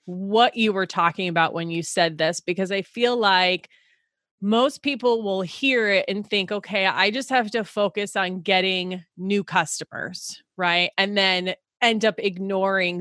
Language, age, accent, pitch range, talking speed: English, 30-49, American, 180-225 Hz, 165 wpm